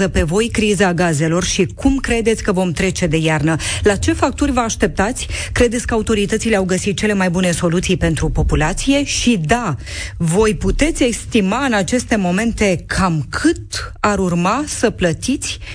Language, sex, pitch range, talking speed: Romanian, female, 160-215 Hz, 160 wpm